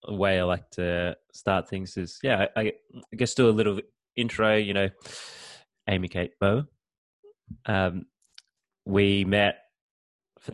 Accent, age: Australian, 20-39